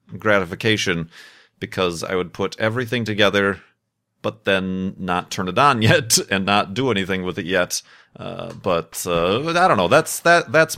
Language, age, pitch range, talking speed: English, 30-49, 95-125 Hz, 165 wpm